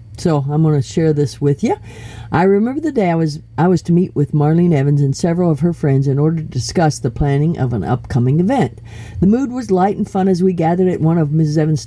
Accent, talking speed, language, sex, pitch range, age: American, 255 wpm, English, female, 135-175 Hz, 50-69